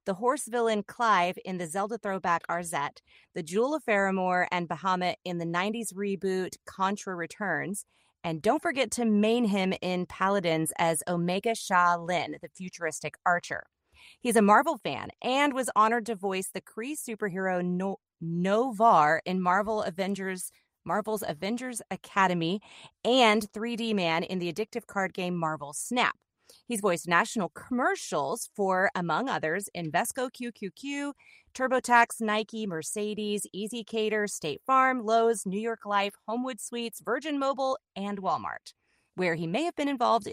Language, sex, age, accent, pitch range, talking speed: English, female, 30-49, American, 175-230 Hz, 145 wpm